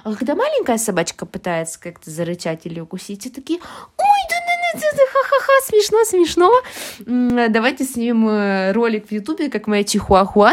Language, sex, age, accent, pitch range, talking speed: Ukrainian, female, 20-39, native, 195-270 Hz, 135 wpm